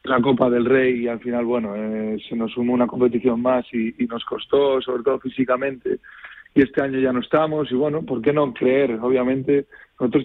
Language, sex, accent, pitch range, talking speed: Spanish, male, Spanish, 120-145 Hz, 210 wpm